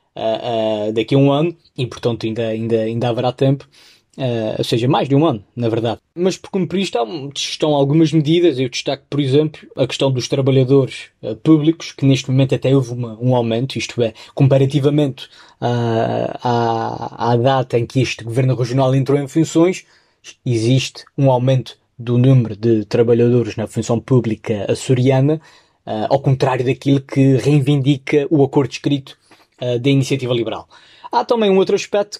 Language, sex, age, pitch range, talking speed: Portuguese, male, 20-39, 120-155 Hz, 155 wpm